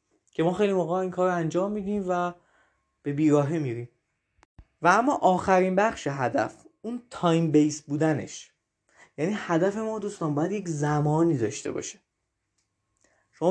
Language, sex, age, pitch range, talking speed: Persian, male, 20-39, 145-175 Hz, 140 wpm